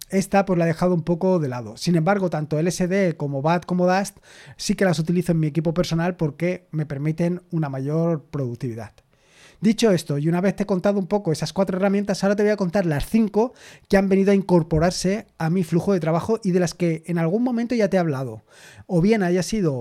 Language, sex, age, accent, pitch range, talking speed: Spanish, male, 30-49, Spanish, 155-195 Hz, 230 wpm